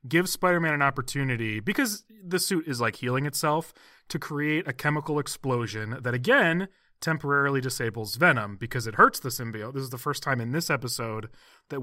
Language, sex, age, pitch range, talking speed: English, male, 30-49, 120-155 Hz, 180 wpm